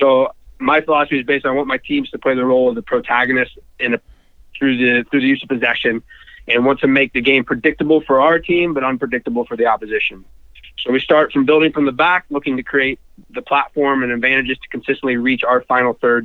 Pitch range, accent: 120-145 Hz, American